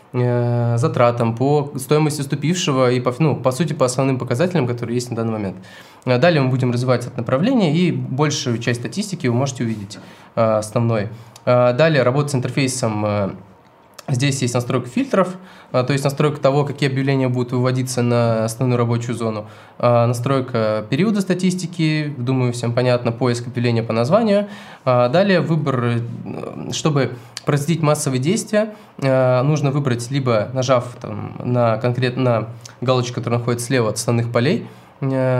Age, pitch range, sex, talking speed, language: 20-39, 120-145 Hz, male, 135 wpm, Russian